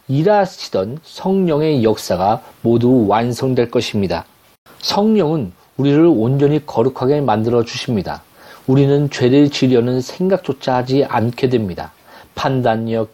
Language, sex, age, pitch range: Korean, male, 40-59, 115-155 Hz